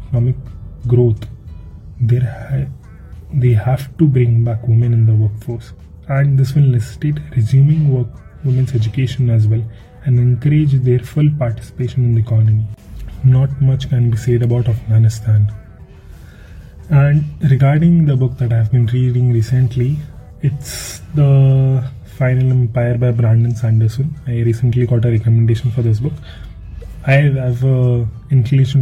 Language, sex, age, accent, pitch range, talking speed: English, male, 20-39, Indian, 115-135 Hz, 140 wpm